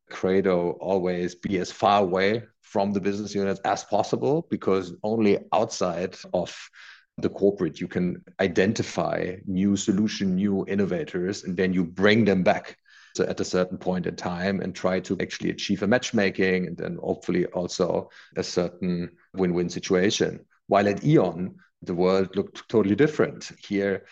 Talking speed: 155 wpm